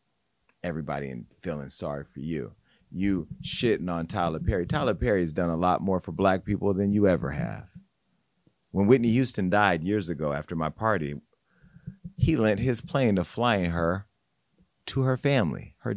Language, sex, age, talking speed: English, male, 30-49, 165 wpm